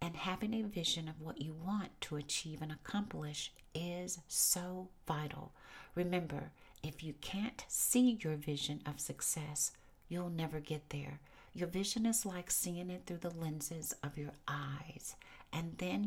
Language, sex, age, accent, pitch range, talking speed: English, female, 60-79, American, 150-185 Hz, 155 wpm